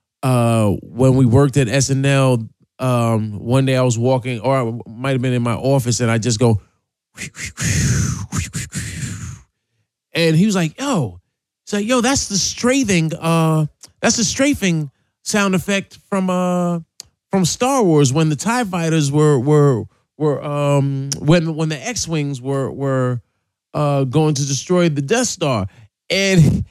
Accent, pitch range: American, 130-190 Hz